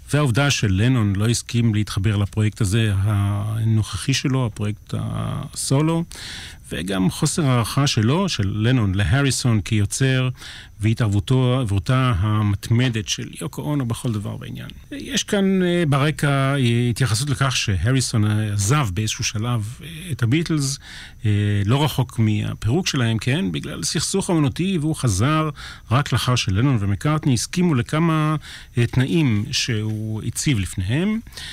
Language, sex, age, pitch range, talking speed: Hebrew, male, 40-59, 110-145 Hz, 115 wpm